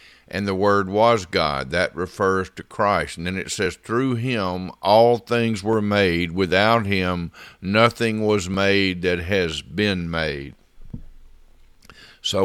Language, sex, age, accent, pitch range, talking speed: English, male, 50-69, American, 90-120 Hz, 140 wpm